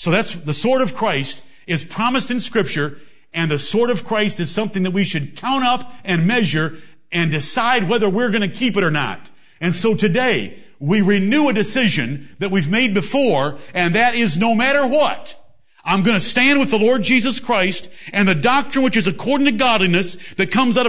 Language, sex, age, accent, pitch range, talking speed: English, male, 50-69, American, 170-225 Hz, 205 wpm